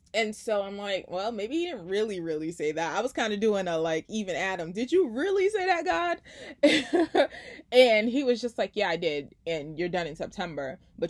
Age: 20-39